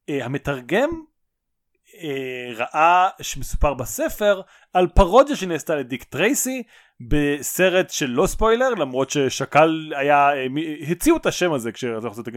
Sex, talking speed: male, 115 wpm